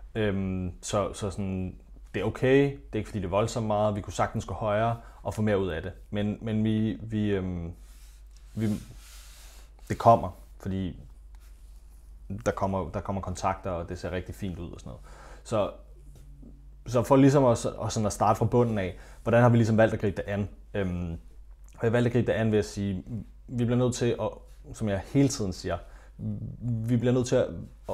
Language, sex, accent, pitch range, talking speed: Danish, male, native, 95-115 Hz, 205 wpm